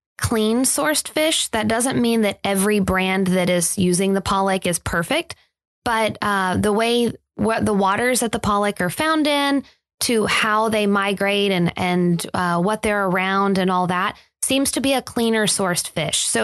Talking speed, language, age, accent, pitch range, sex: 185 wpm, English, 20-39, American, 195-240 Hz, female